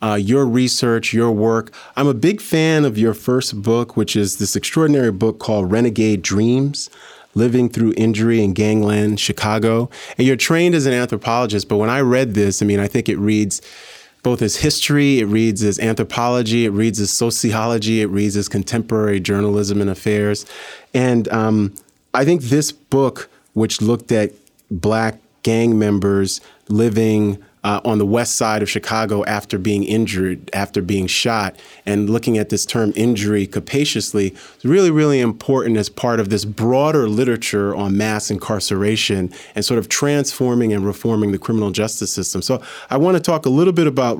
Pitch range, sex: 105-125 Hz, male